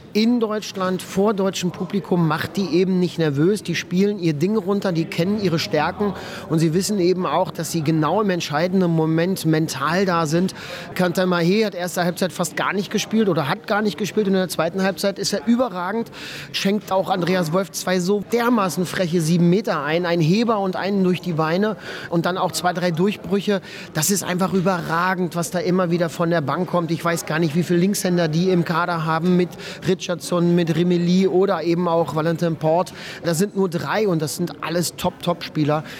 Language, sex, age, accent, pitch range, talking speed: German, male, 30-49, German, 170-195 Hz, 205 wpm